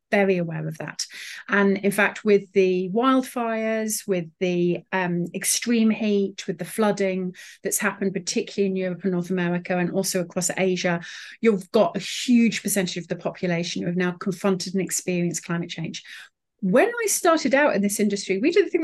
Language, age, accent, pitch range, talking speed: English, 30-49, British, 185-235 Hz, 180 wpm